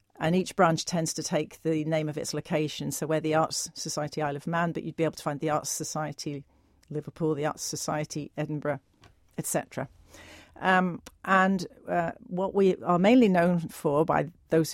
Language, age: English, 40-59